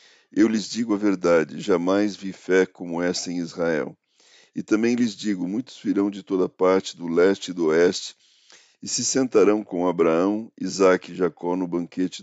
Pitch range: 90-105 Hz